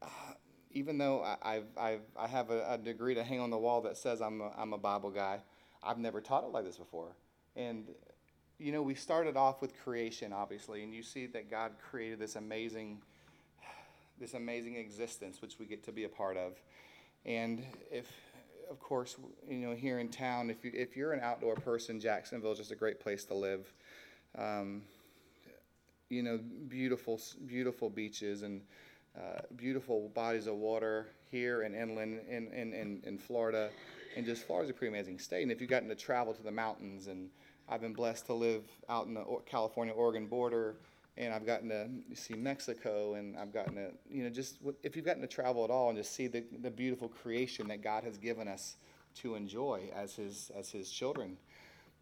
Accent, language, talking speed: American, English, 190 wpm